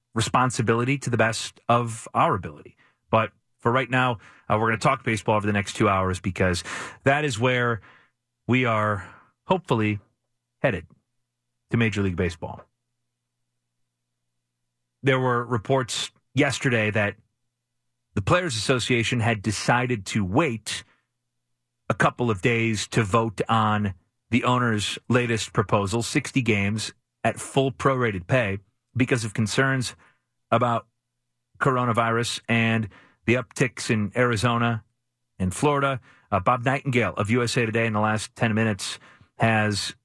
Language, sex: English, male